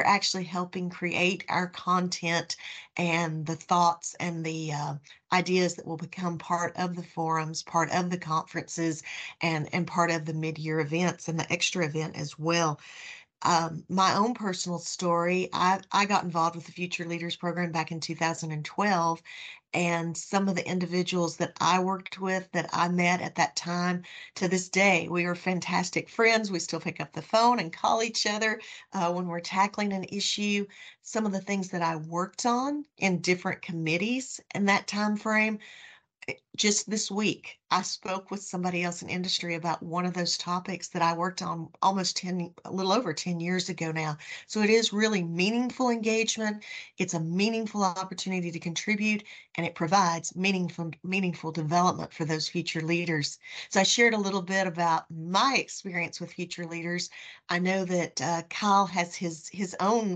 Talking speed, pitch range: 175 wpm, 165-190 Hz